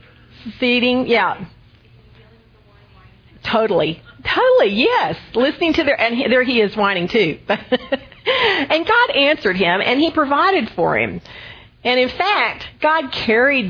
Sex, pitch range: female, 195-265 Hz